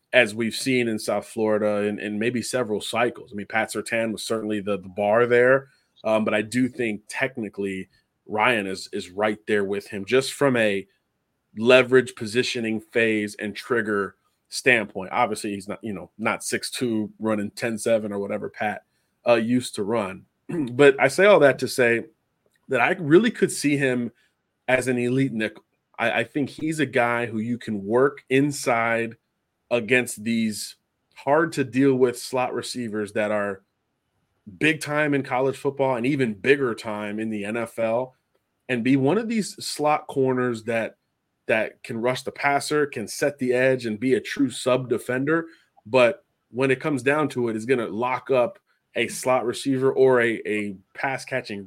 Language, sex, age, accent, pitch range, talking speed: English, male, 30-49, American, 110-130 Hz, 170 wpm